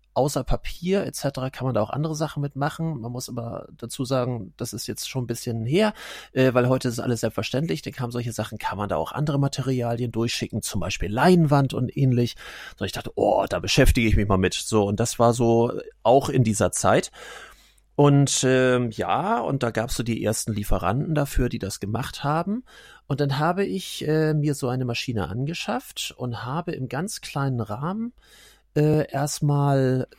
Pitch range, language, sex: 115-150 Hz, German, male